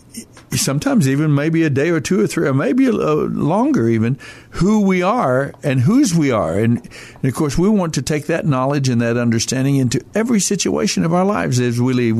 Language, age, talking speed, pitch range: English, 60-79, 210 wpm, 125-165 Hz